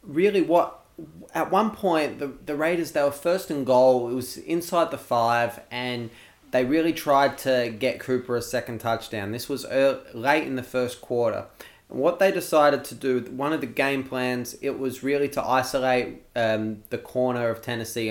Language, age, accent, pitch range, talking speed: English, 20-39, Australian, 120-145 Hz, 190 wpm